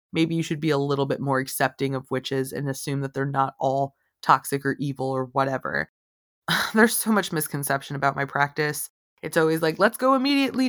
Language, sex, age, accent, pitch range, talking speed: English, female, 20-39, American, 140-175 Hz, 195 wpm